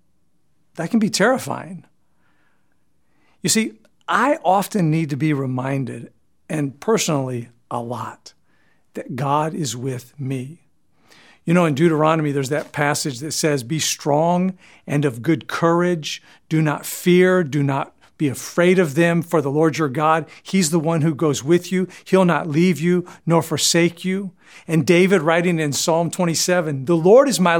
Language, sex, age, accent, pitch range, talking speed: English, male, 50-69, American, 150-185 Hz, 160 wpm